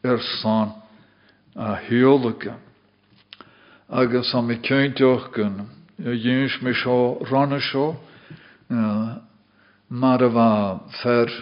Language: German